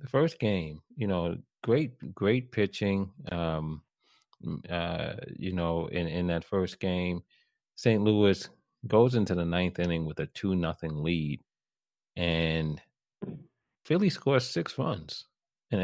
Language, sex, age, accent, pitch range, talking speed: English, male, 30-49, American, 85-105 Hz, 135 wpm